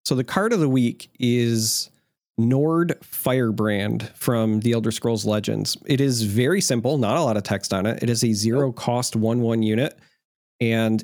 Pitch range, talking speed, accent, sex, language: 115-140 Hz, 185 wpm, American, male, English